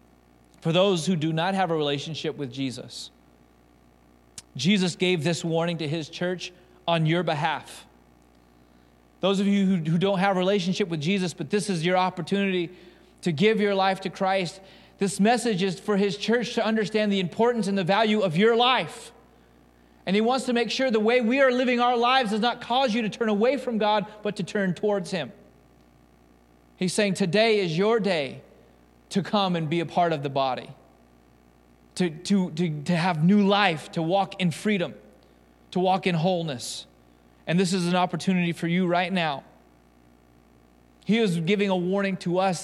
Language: English